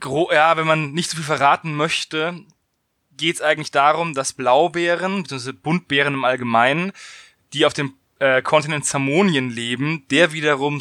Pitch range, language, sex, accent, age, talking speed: 135-170 Hz, German, male, German, 20-39, 150 wpm